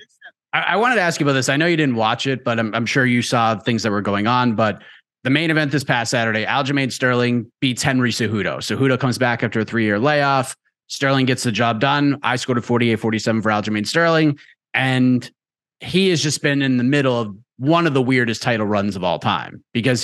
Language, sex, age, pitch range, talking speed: English, male, 30-49, 125-155 Hz, 225 wpm